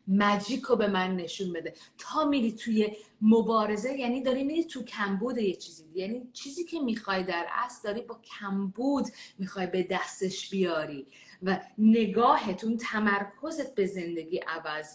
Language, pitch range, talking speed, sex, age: Persian, 170-225 Hz, 145 wpm, female, 30-49